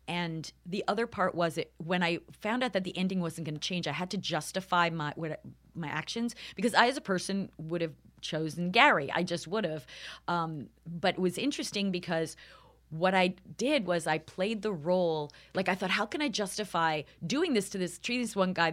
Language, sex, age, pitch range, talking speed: English, female, 30-49, 165-210 Hz, 205 wpm